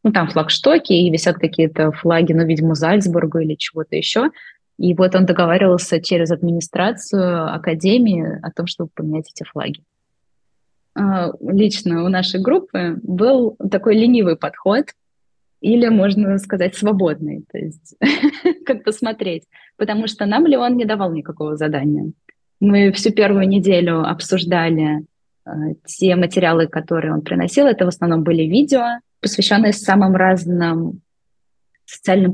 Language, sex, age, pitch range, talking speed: Russian, female, 20-39, 165-195 Hz, 130 wpm